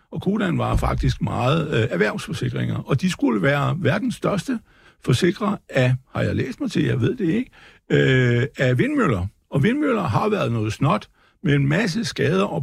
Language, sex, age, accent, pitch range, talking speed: Danish, male, 60-79, native, 125-175 Hz, 180 wpm